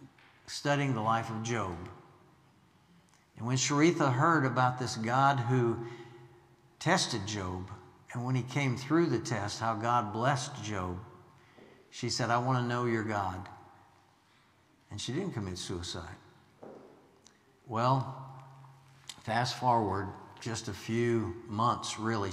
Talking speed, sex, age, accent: 125 wpm, male, 60-79, American